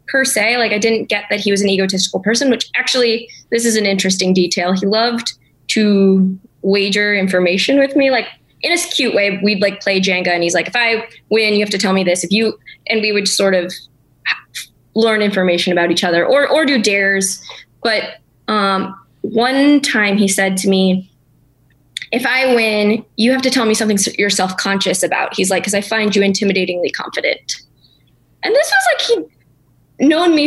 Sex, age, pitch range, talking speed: female, 20-39, 185-230 Hz, 190 wpm